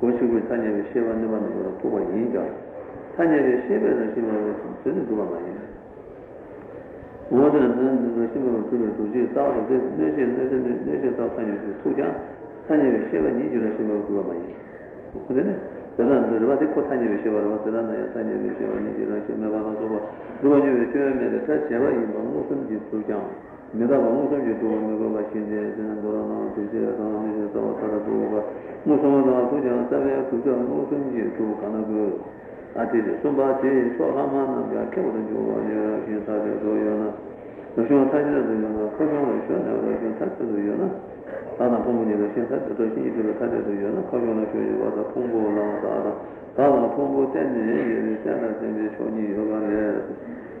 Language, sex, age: Italian, male, 50-69